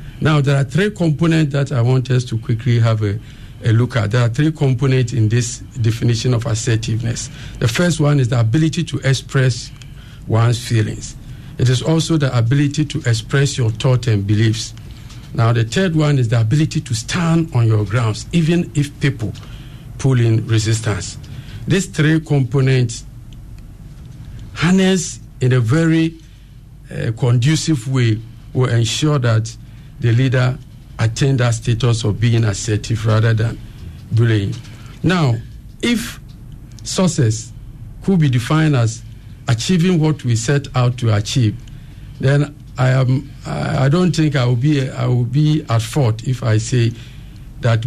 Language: English